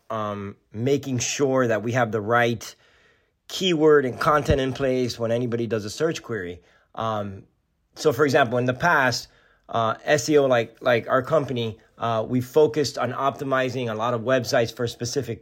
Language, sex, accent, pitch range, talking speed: English, male, American, 115-150 Hz, 165 wpm